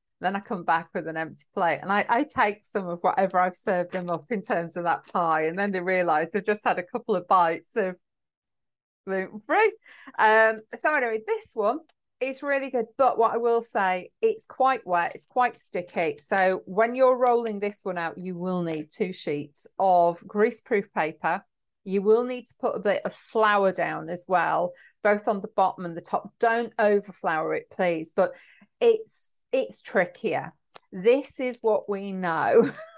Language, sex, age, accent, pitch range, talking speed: English, female, 40-59, British, 180-230 Hz, 185 wpm